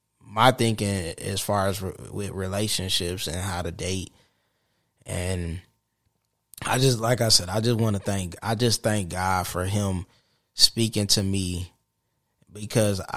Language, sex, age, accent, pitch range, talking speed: English, male, 20-39, American, 95-115 Hz, 145 wpm